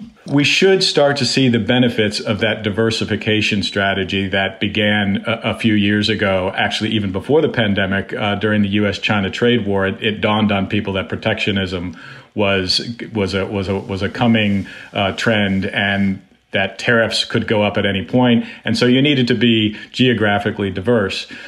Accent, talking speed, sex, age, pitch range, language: American, 175 wpm, male, 40-59, 100-120 Hz, English